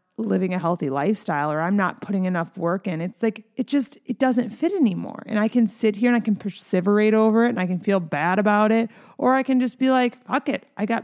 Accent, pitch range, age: American, 190-230 Hz, 30-49